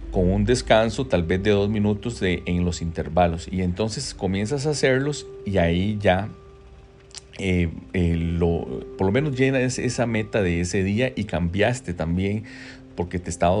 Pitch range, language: 85-115 Hz, Spanish